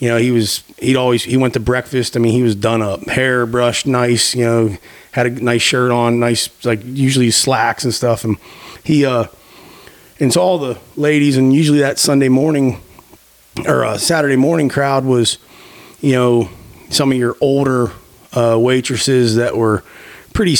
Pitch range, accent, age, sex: 120-145 Hz, American, 30-49, male